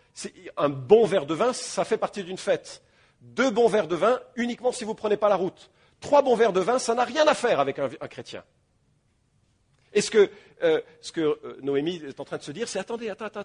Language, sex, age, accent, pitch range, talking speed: English, male, 40-59, French, 150-245 Hz, 245 wpm